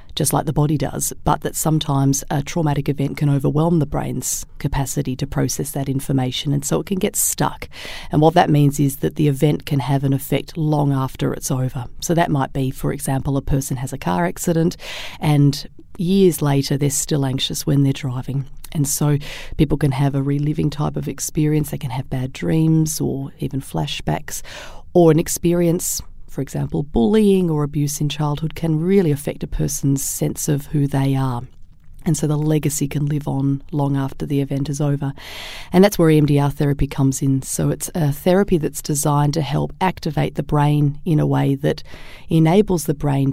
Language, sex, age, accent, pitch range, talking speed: English, female, 40-59, Australian, 140-155 Hz, 190 wpm